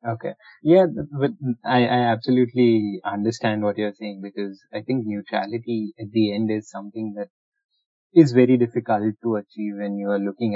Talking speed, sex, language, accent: 165 wpm, male, English, Indian